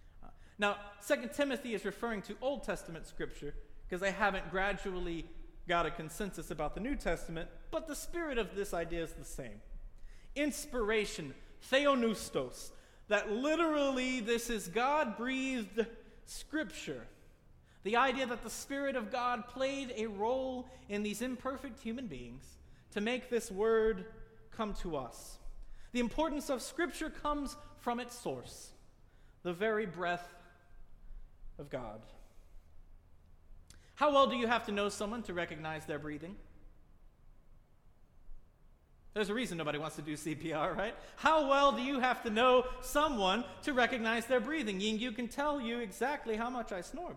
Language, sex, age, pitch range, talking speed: English, male, 30-49, 165-255 Hz, 145 wpm